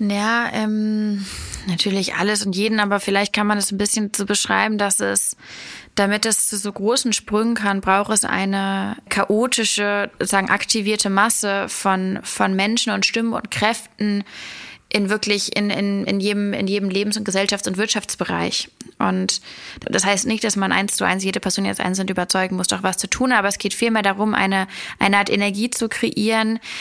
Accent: German